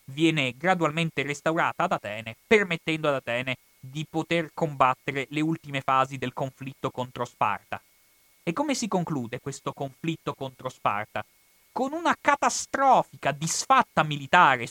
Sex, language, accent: male, Italian, native